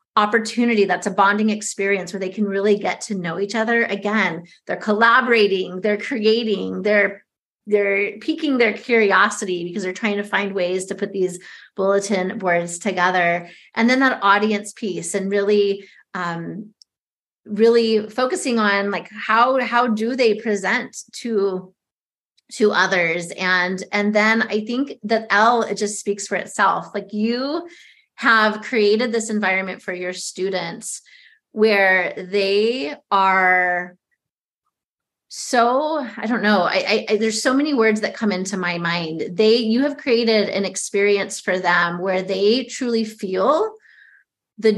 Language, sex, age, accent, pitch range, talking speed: English, female, 30-49, American, 195-230 Hz, 145 wpm